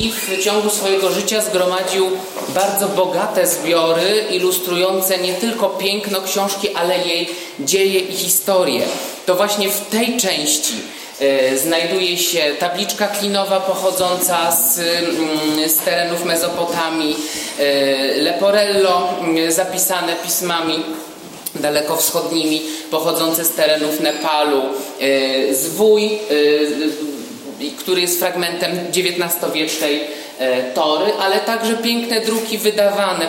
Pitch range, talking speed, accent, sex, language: 155-195 Hz, 95 wpm, native, male, Polish